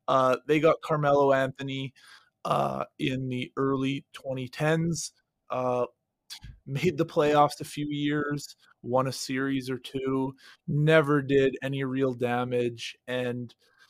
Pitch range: 135-165 Hz